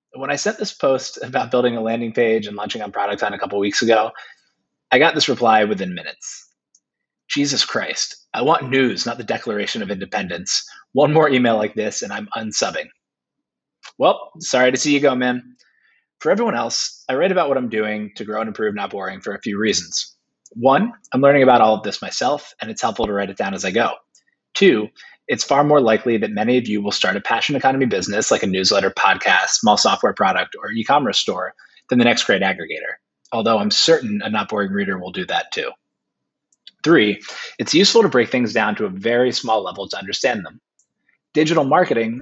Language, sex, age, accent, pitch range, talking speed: English, male, 20-39, American, 110-140 Hz, 210 wpm